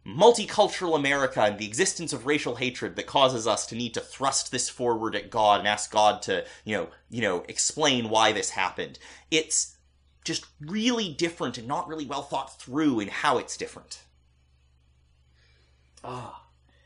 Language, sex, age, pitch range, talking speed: English, male, 30-49, 110-160 Hz, 165 wpm